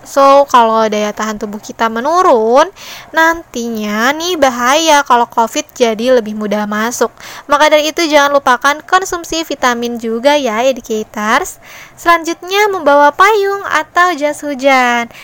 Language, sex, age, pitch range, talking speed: Indonesian, female, 20-39, 245-305 Hz, 125 wpm